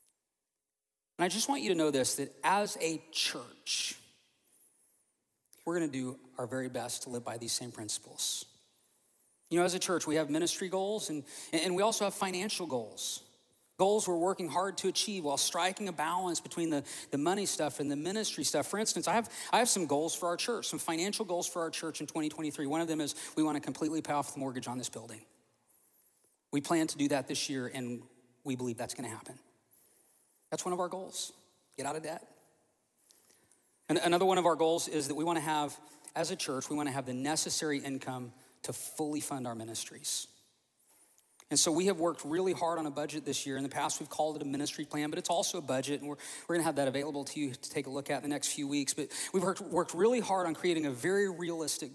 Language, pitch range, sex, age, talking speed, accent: English, 140-175 Hz, male, 40-59, 220 wpm, American